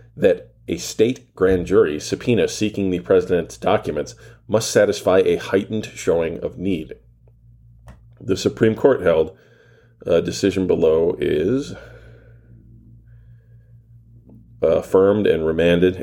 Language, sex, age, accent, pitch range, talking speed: English, male, 40-59, American, 115-145 Hz, 105 wpm